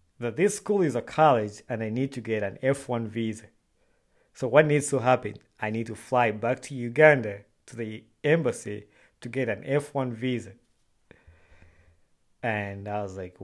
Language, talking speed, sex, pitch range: English, 170 wpm, male, 110-135 Hz